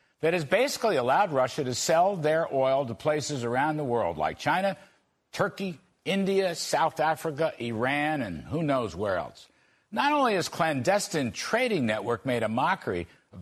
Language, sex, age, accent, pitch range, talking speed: English, male, 60-79, American, 145-205 Hz, 160 wpm